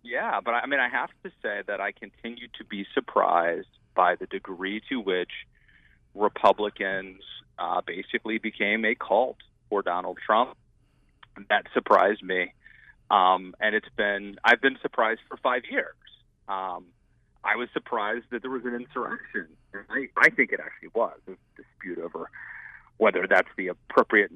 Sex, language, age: male, English, 30-49